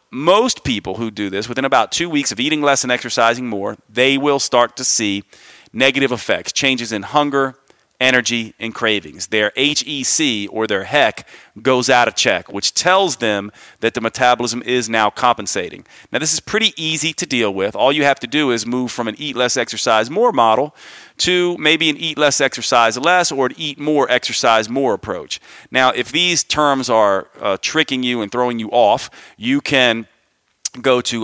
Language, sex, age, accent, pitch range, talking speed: English, male, 40-59, American, 110-140 Hz, 190 wpm